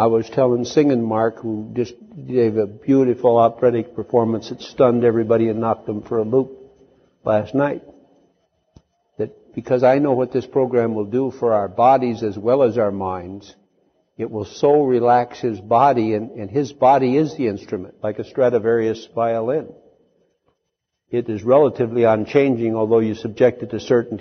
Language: English